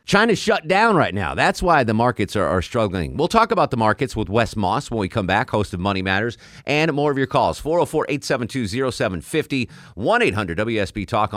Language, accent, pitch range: English, American, 100-140 Hz